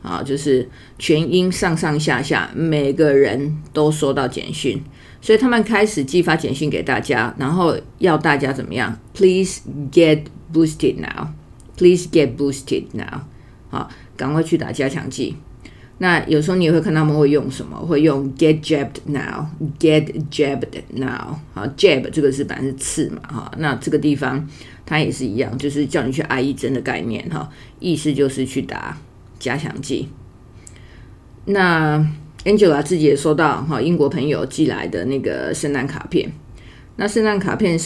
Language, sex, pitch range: English, female, 135-165 Hz